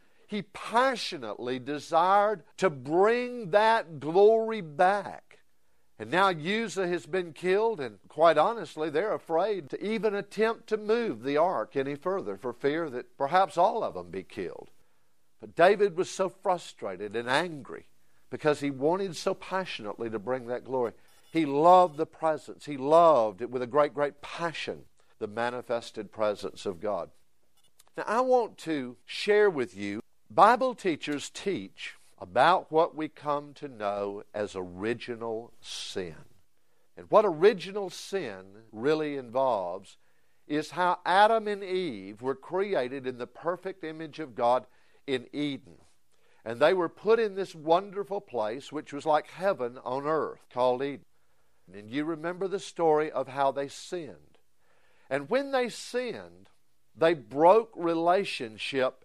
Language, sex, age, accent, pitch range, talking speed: English, male, 50-69, American, 125-190 Hz, 145 wpm